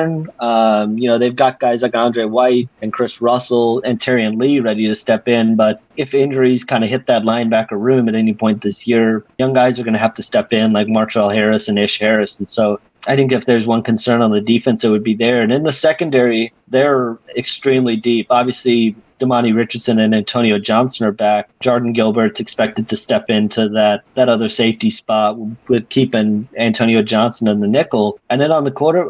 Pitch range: 110-130 Hz